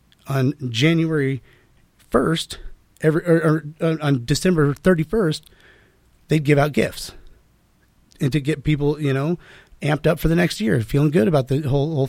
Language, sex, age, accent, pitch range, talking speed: English, male, 30-49, American, 130-165 Hz, 165 wpm